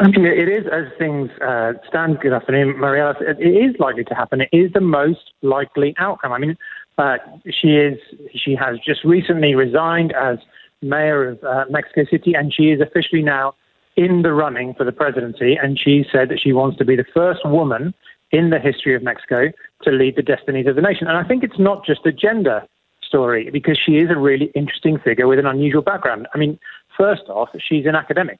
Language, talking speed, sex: English, 205 wpm, male